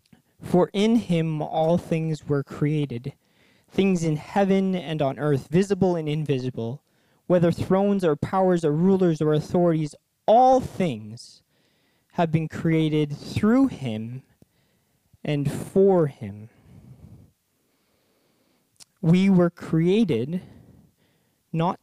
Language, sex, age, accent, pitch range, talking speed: English, male, 20-39, American, 140-175 Hz, 105 wpm